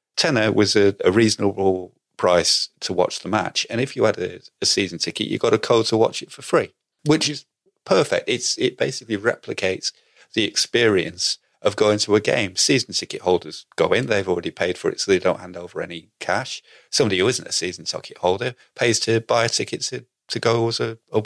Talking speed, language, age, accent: 215 wpm, English, 30-49, British